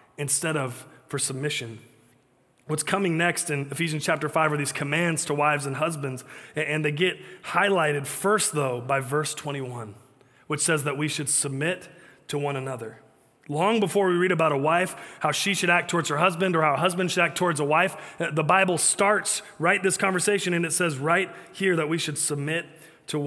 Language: English